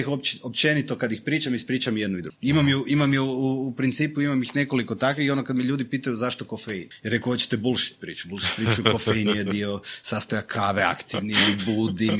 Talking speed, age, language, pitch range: 210 wpm, 30-49, Croatian, 115-145 Hz